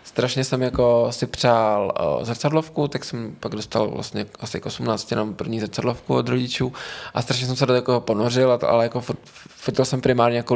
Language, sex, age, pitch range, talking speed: Czech, male, 20-39, 115-130 Hz, 200 wpm